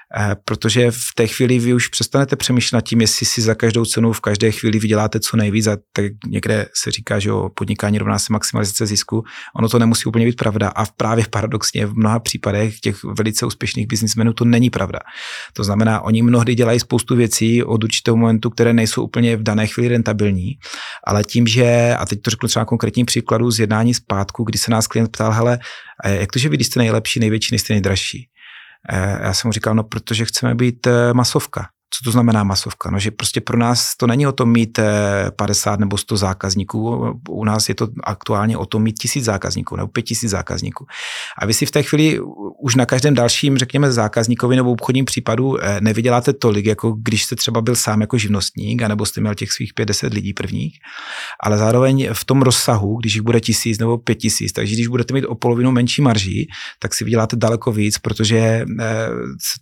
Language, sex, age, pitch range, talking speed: Slovak, male, 30-49, 105-120 Hz, 195 wpm